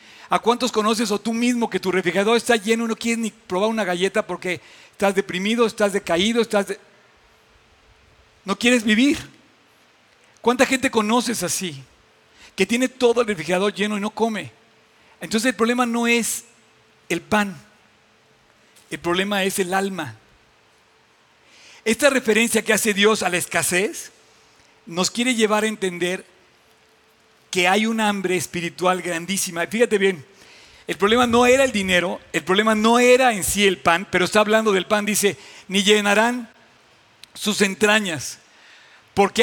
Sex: male